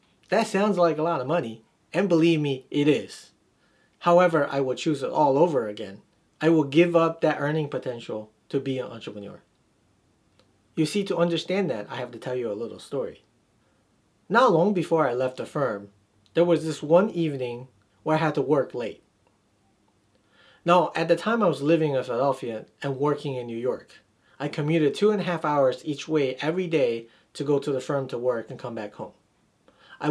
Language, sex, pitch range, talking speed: English, male, 130-165 Hz, 195 wpm